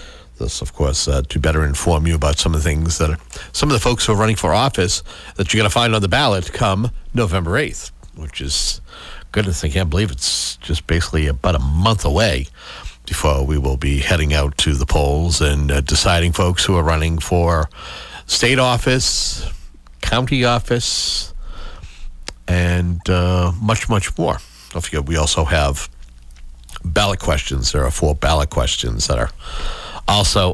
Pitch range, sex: 75-100 Hz, male